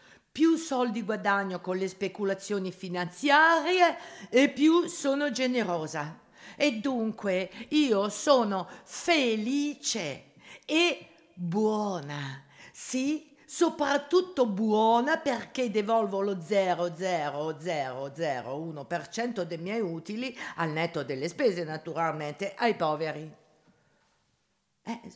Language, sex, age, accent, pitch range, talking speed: Italian, female, 50-69, native, 165-240 Hz, 85 wpm